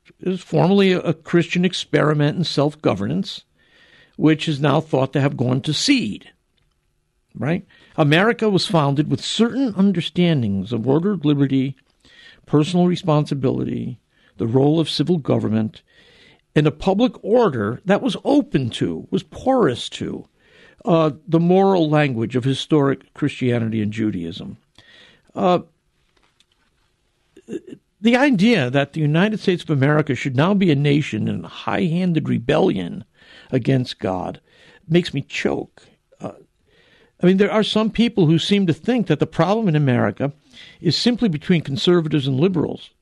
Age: 60-79